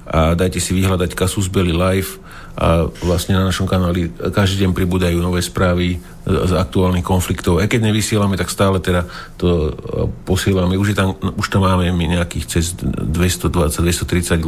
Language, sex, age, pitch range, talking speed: Slovak, male, 50-69, 90-110 Hz, 155 wpm